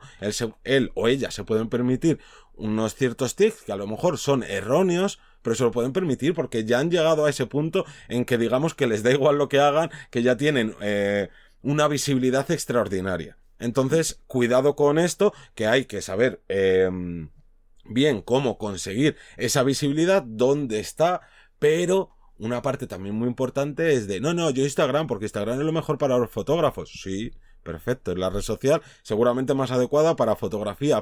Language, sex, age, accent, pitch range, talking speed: Spanish, male, 30-49, Spanish, 105-155 Hz, 180 wpm